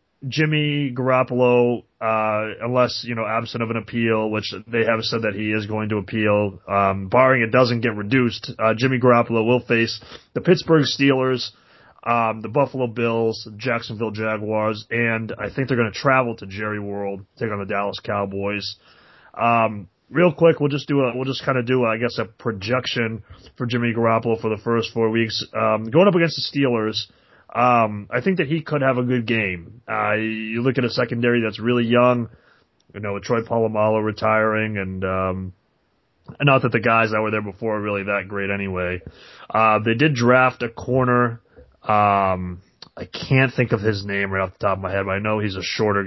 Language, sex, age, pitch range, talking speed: English, male, 30-49, 105-125 Hz, 195 wpm